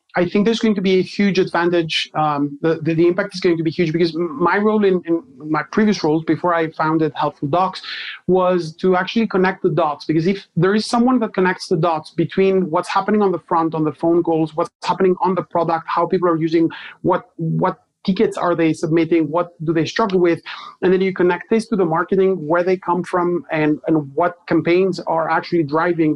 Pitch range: 160-195 Hz